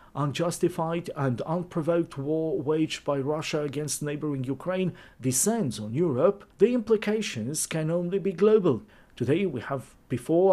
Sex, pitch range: male, 135-180 Hz